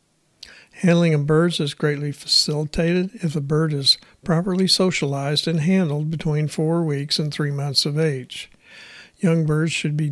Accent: American